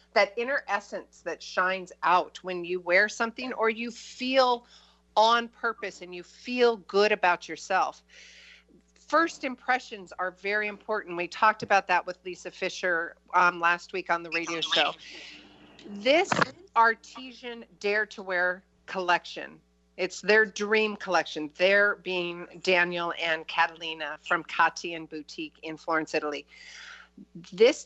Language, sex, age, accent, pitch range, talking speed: English, female, 50-69, American, 175-225 Hz, 135 wpm